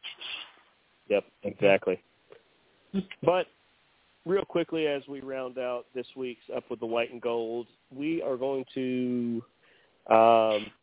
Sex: male